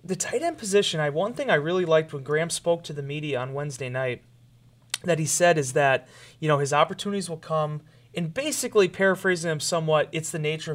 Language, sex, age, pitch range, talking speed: English, male, 30-49, 140-185 Hz, 210 wpm